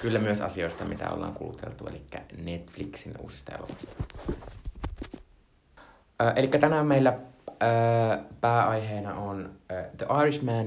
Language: Finnish